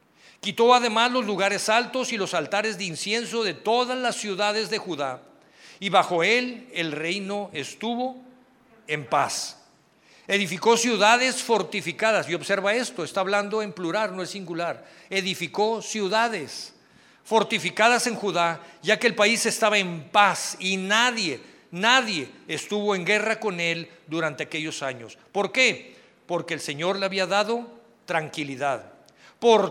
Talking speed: 140 wpm